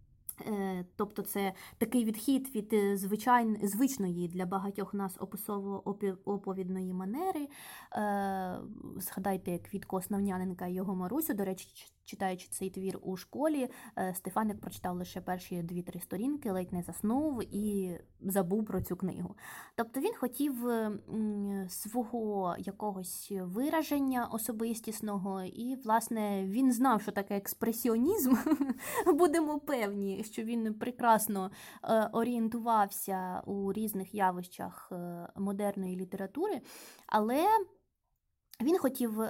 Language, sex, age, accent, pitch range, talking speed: Ukrainian, female, 20-39, native, 190-230 Hz, 100 wpm